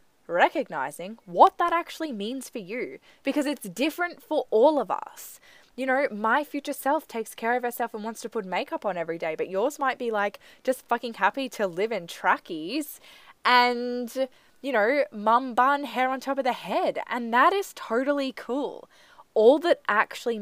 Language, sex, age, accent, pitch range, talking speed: English, female, 10-29, Australian, 185-270 Hz, 180 wpm